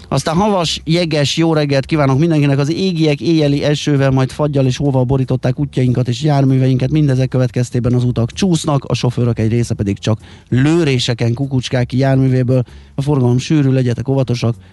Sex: male